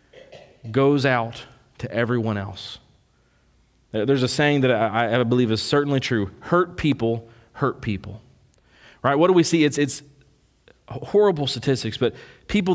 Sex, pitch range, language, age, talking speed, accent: male, 115-150 Hz, English, 40-59, 140 wpm, American